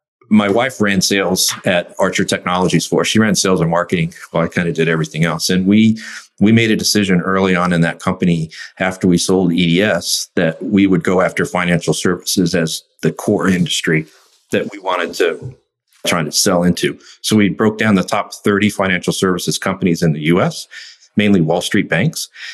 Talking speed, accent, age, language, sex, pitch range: 190 wpm, American, 50-69, English, male, 85-105 Hz